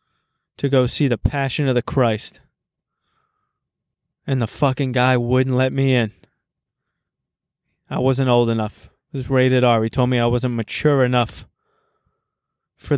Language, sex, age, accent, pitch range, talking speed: English, male, 20-39, American, 120-140 Hz, 150 wpm